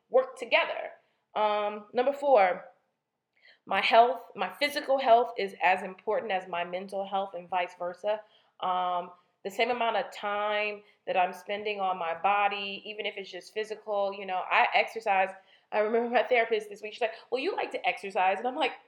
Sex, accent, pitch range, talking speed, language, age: female, American, 185-235 Hz, 180 wpm, English, 20-39